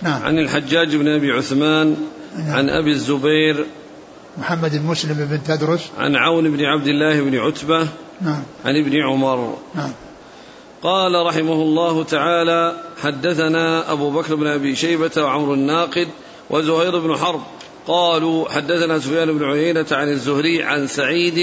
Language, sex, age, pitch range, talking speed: Arabic, male, 50-69, 150-170 Hz, 130 wpm